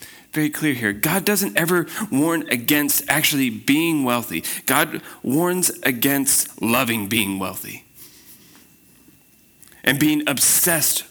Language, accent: English, American